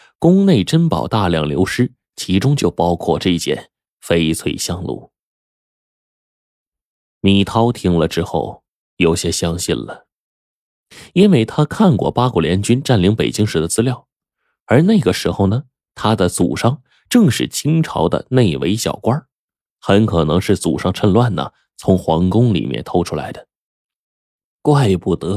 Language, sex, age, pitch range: Chinese, male, 20-39, 85-120 Hz